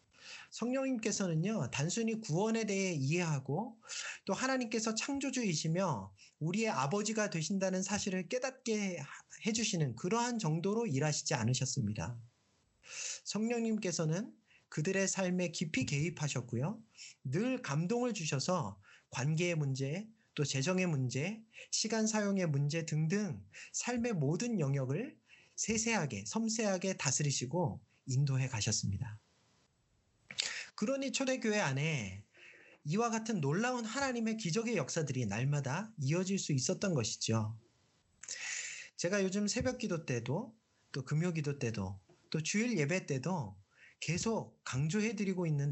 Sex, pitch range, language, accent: male, 140-225 Hz, Korean, native